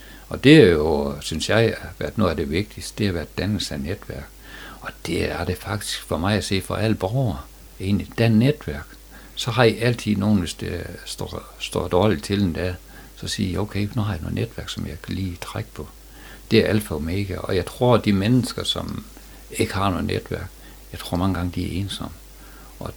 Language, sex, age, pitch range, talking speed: Danish, male, 60-79, 85-105 Hz, 220 wpm